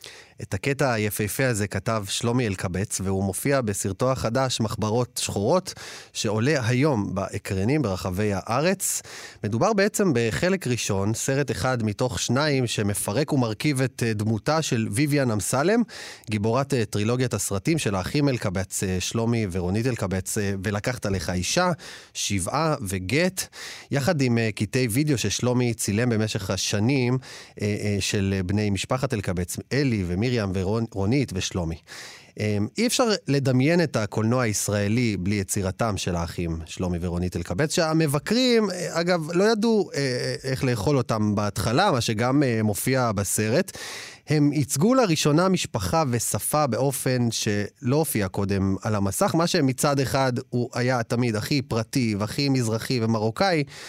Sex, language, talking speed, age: male, Hebrew, 125 wpm, 30-49